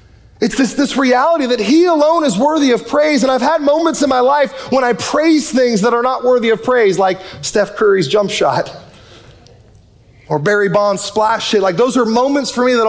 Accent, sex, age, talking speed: American, male, 30-49, 210 wpm